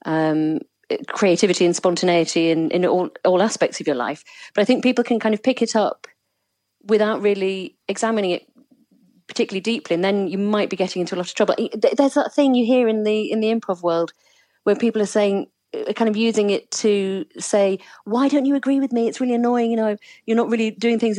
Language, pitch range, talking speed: English, 180-230 Hz, 215 wpm